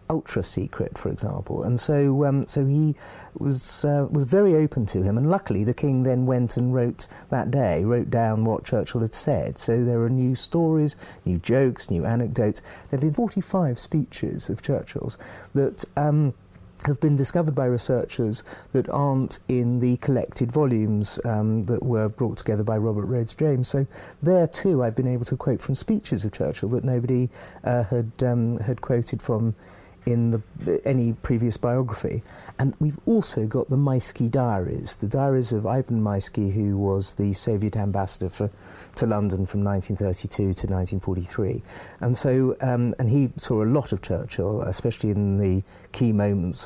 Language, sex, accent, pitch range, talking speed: English, male, British, 105-130 Hz, 170 wpm